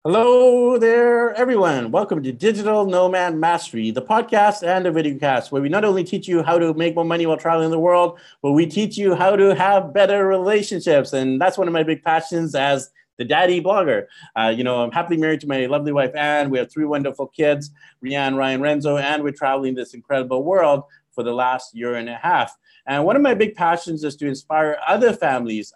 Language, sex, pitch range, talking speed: English, male, 135-180 Hz, 215 wpm